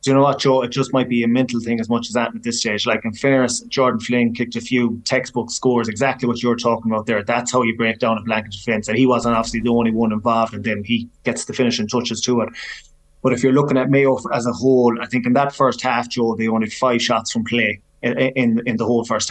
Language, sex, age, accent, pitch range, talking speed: English, male, 20-39, Irish, 115-125 Hz, 275 wpm